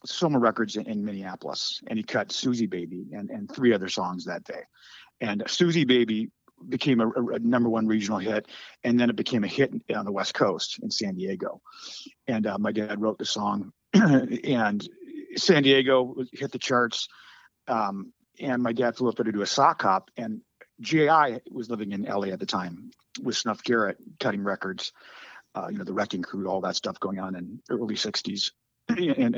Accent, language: American, English